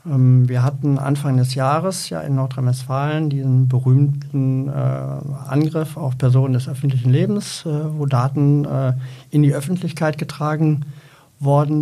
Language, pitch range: German, 130-155 Hz